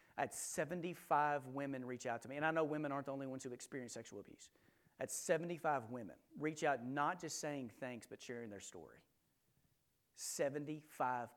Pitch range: 135-175 Hz